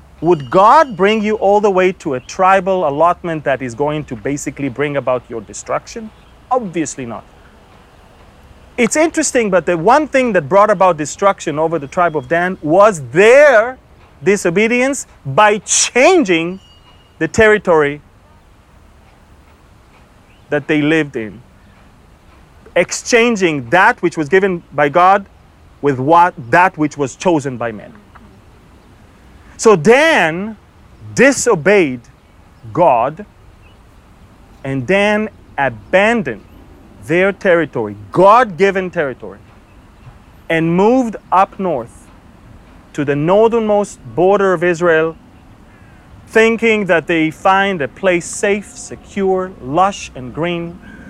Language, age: English, 30-49